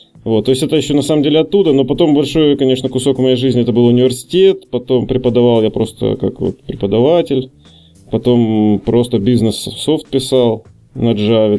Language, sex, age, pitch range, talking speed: Russian, male, 20-39, 105-125 Hz, 170 wpm